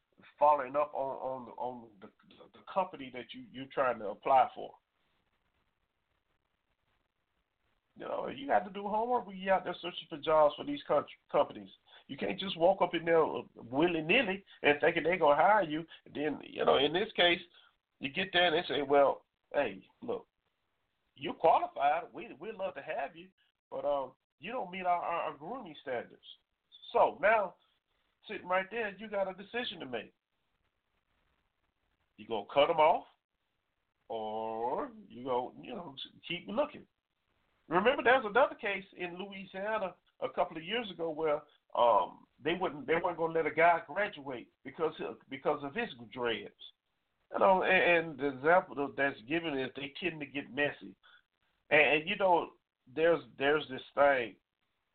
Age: 40-59